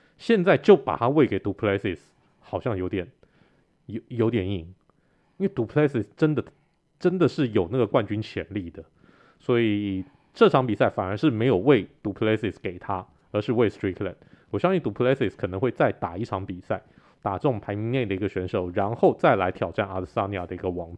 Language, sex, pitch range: Chinese, male, 95-120 Hz